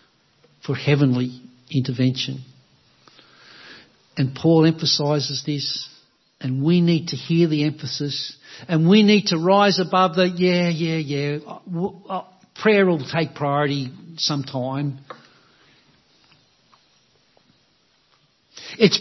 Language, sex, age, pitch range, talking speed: English, male, 60-79, 145-200 Hz, 95 wpm